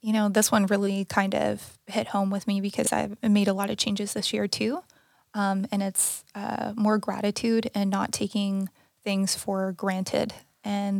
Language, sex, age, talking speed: English, female, 20-39, 185 wpm